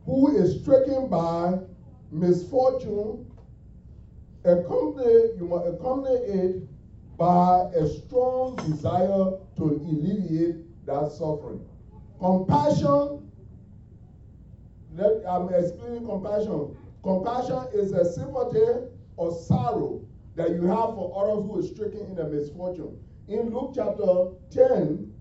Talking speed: 100 wpm